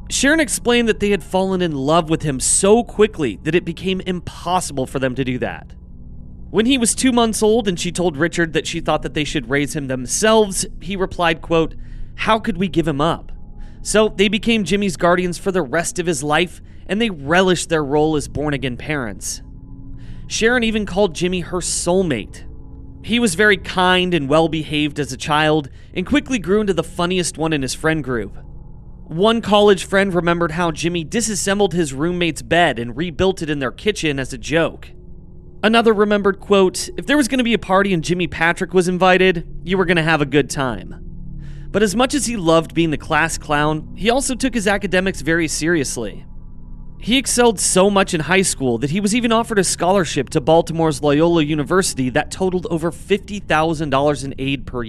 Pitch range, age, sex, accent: 150-195 Hz, 30-49, male, American